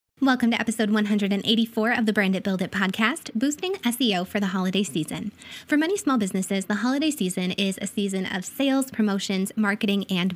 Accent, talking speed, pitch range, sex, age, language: American, 185 wpm, 195-245 Hz, female, 20-39, English